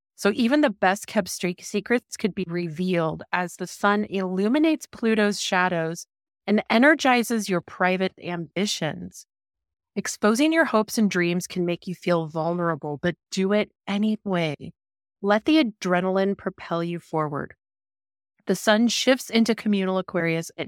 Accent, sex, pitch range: American, female, 170-215 Hz